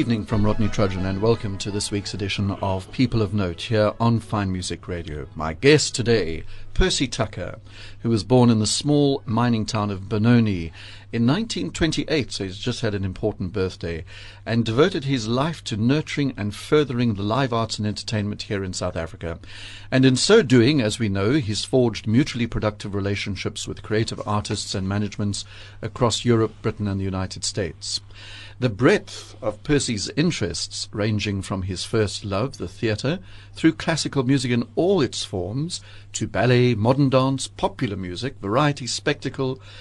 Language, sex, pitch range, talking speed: English, male, 100-125 Hz, 170 wpm